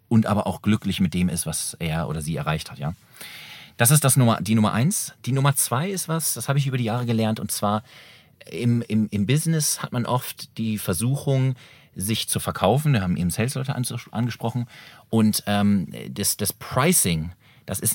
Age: 40-59